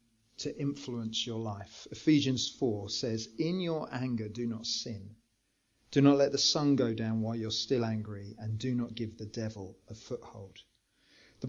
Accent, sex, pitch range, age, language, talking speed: British, male, 115-140 Hz, 40-59, English, 170 wpm